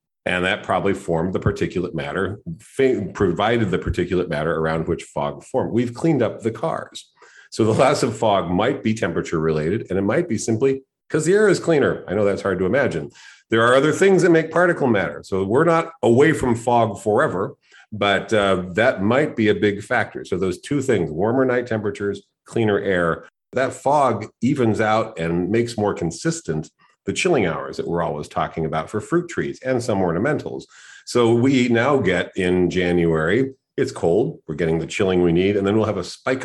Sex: male